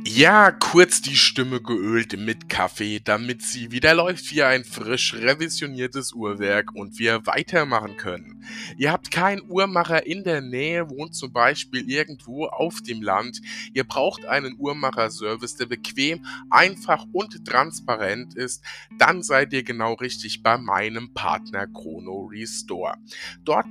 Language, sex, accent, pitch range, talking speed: German, male, German, 115-155 Hz, 140 wpm